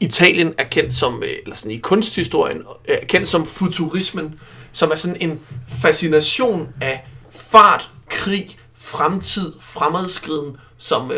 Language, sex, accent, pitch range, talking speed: Danish, male, native, 145-175 Hz, 125 wpm